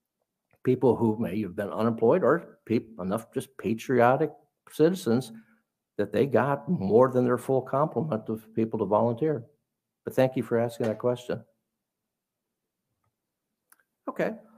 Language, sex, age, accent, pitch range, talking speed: English, male, 60-79, American, 110-150 Hz, 130 wpm